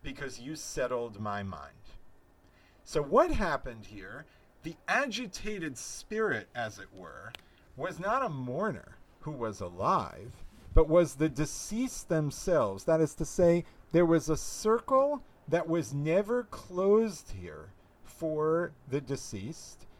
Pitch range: 135-195 Hz